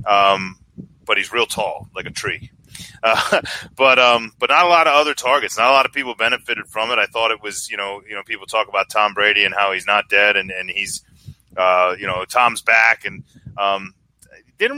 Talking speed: 225 wpm